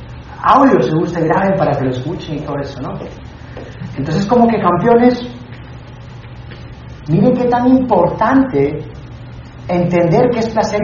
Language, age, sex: Spanish, 40-59, male